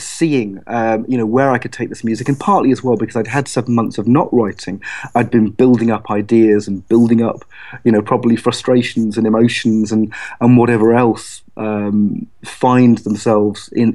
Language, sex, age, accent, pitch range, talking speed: English, male, 30-49, British, 110-125 Hz, 190 wpm